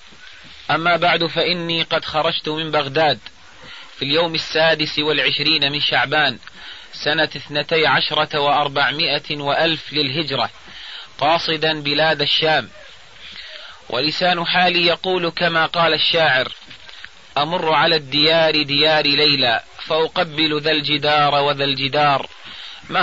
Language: Arabic